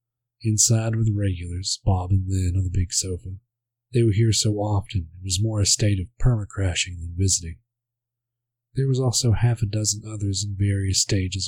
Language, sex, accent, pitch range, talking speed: English, male, American, 95-120 Hz, 185 wpm